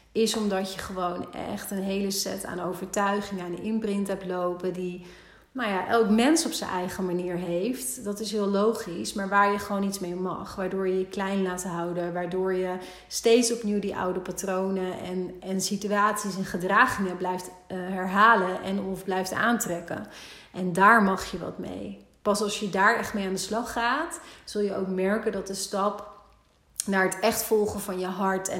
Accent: Dutch